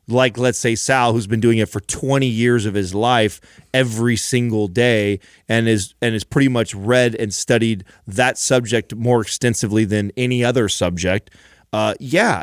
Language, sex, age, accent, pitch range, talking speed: English, male, 30-49, American, 110-135 Hz, 175 wpm